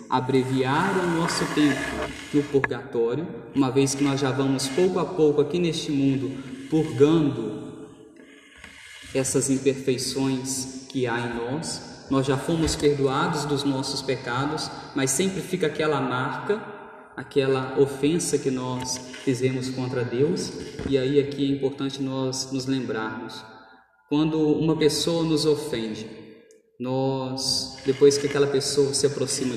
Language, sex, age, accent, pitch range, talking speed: Portuguese, male, 20-39, Brazilian, 130-150 Hz, 130 wpm